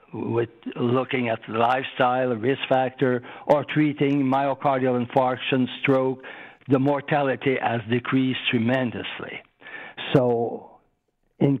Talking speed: 100 wpm